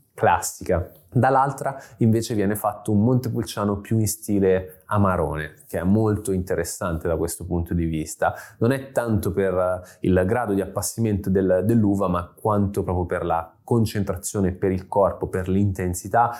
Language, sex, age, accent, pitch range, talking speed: Italian, male, 20-39, native, 90-110 Hz, 145 wpm